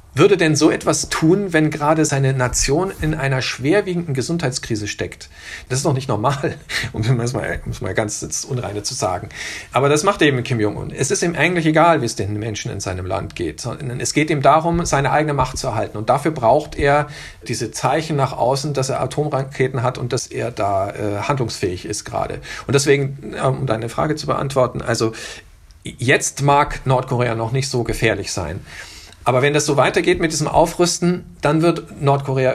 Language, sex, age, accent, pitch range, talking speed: German, male, 50-69, German, 115-150 Hz, 190 wpm